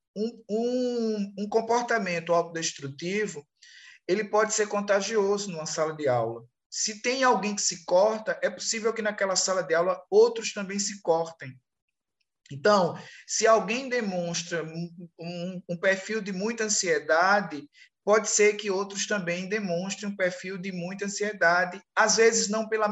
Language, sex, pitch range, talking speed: Portuguese, male, 175-215 Hz, 145 wpm